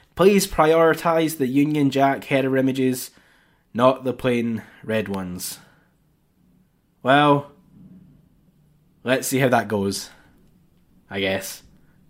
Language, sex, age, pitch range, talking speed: English, male, 10-29, 115-160 Hz, 100 wpm